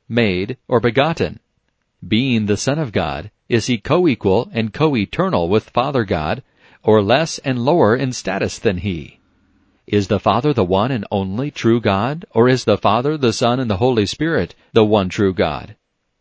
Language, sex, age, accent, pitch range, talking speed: English, male, 50-69, American, 105-130 Hz, 175 wpm